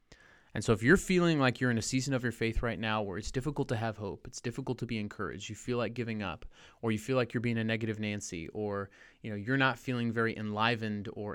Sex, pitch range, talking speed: male, 110-140 Hz, 260 wpm